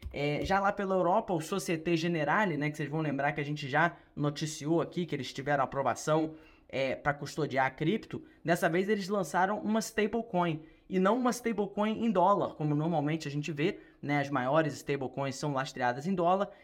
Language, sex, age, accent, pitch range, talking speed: Portuguese, male, 20-39, Brazilian, 150-185 Hz, 190 wpm